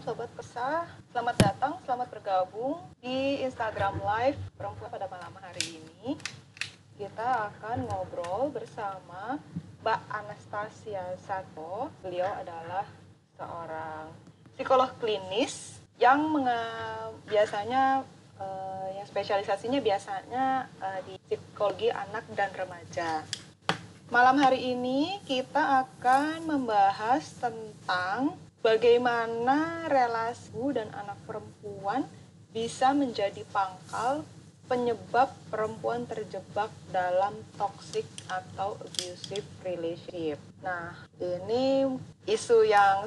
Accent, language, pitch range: native, Indonesian, 180-255 Hz